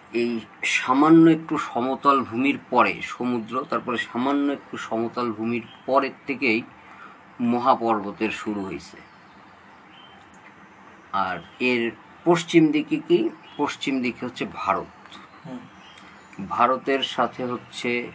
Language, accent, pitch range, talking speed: Bengali, native, 110-140 Hz, 95 wpm